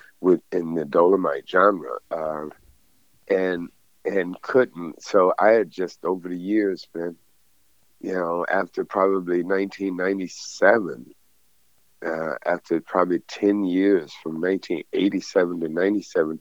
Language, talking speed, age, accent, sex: English, 110 wpm, 60-79, American, male